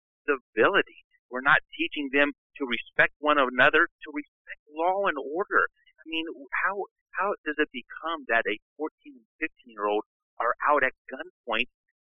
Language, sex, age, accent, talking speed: English, male, 50-69, American, 160 wpm